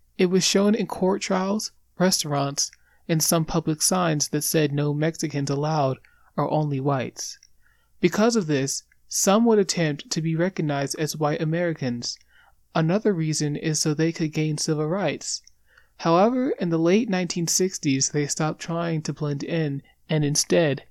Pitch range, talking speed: 145-175 Hz, 150 wpm